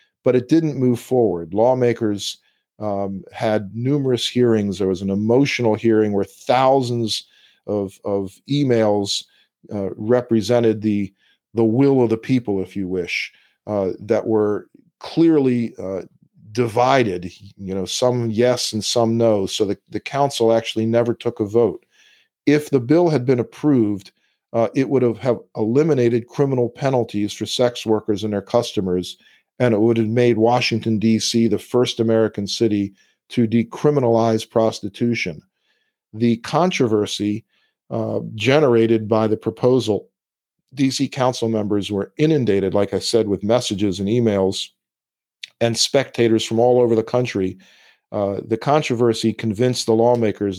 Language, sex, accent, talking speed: English, male, American, 140 wpm